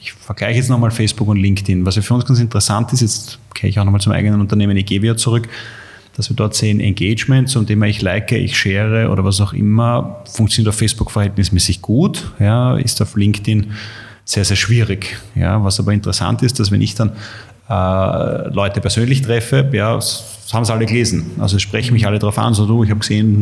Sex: male